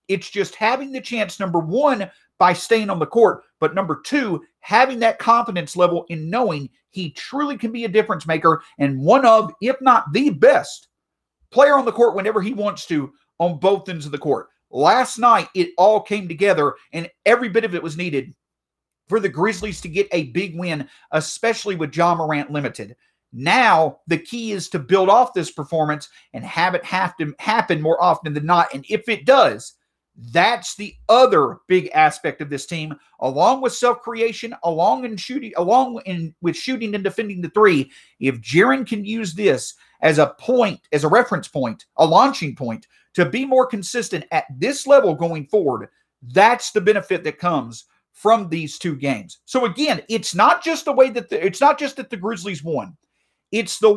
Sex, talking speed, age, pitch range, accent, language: male, 190 wpm, 40-59, 165-230 Hz, American, English